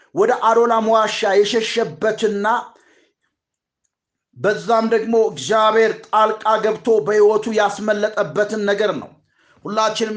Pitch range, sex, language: 220-245 Hz, male, Amharic